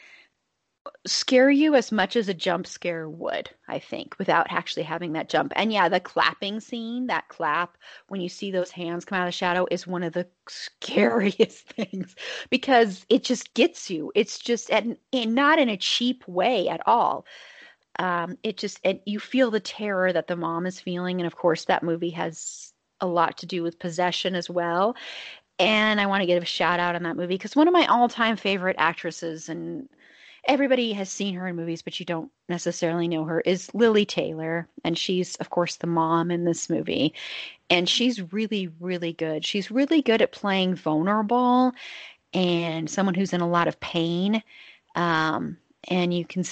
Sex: female